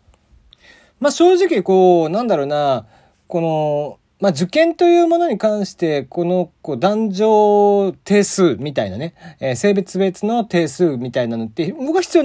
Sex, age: male, 40-59